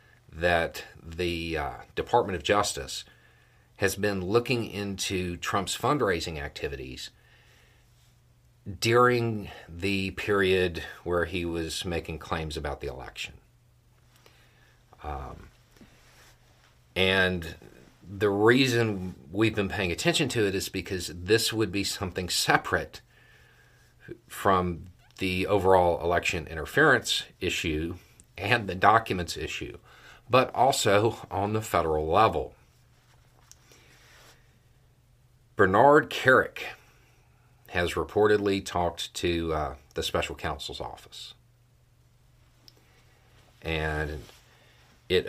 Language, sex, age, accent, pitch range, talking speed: English, male, 40-59, American, 85-120 Hz, 95 wpm